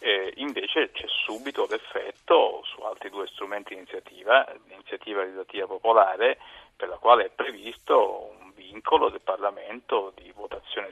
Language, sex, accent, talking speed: Italian, male, native, 135 wpm